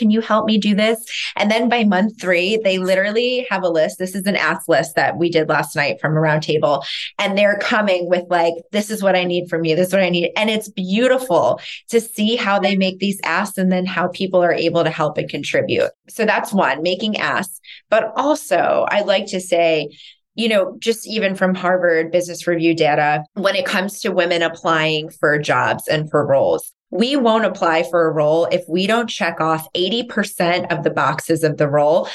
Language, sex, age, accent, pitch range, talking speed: English, female, 20-39, American, 170-220 Hz, 215 wpm